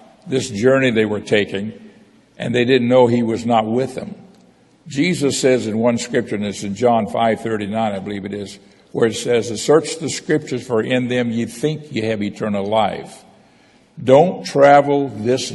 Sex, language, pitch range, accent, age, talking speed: male, English, 110-130 Hz, American, 60-79, 180 wpm